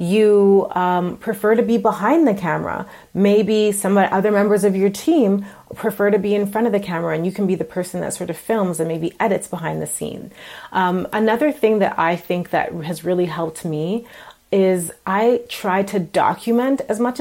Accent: American